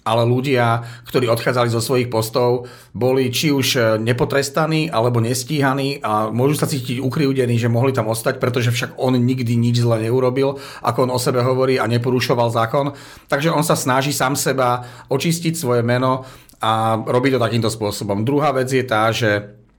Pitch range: 110-125 Hz